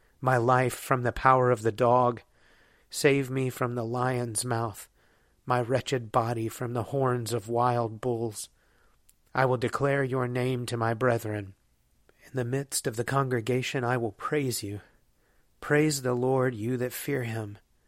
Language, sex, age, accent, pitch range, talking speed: English, male, 30-49, American, 115-130 Hz, 160 wpm